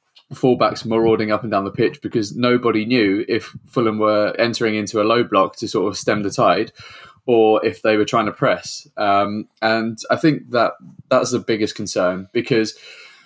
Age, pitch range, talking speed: 20-39, 105-115 Hz, 185 wpm